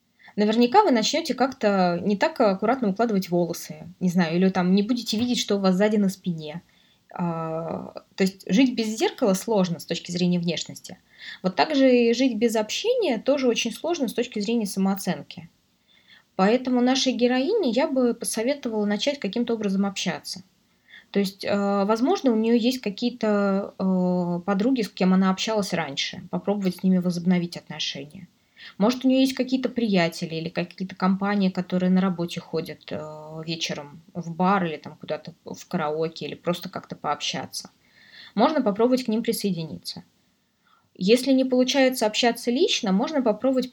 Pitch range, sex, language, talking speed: 185-240 Hz, female, Russian, 150 wpm